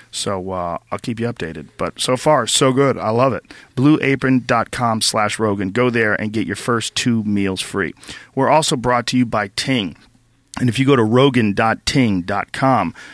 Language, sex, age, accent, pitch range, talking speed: English, male, 40-59, American, 110-135 Hz, 180 wpm